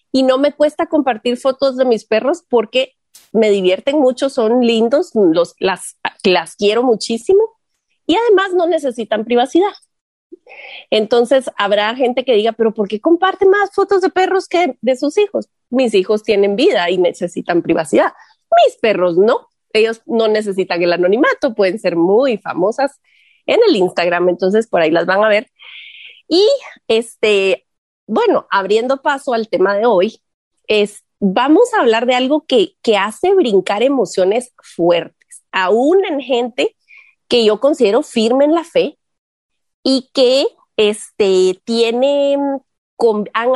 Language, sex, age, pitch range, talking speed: Spanish, female, 30-49, 200-285 Hz, 145 wpm